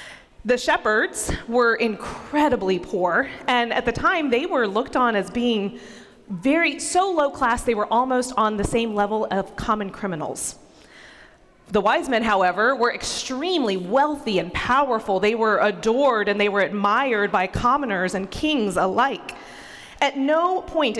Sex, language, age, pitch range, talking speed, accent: female, English, 30-49, 210-295 Hz, 150 wpm, American